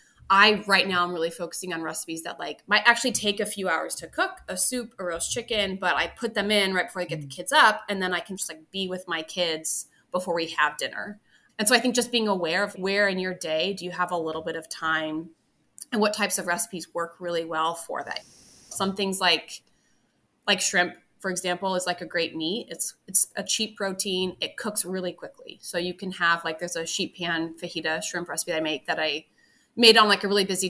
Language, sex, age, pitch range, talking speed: English, female, 20-39, 170-205 Hz, 240 wpm